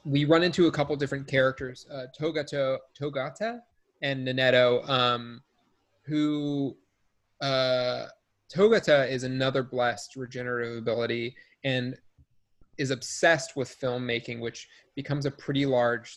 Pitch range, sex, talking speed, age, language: 120-140 Hz, male, 110 wpm, 20-39, English